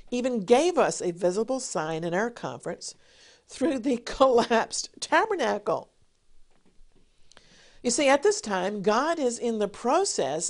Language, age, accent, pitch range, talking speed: English, 50-69, American, 170-230 Hz, 130 wpm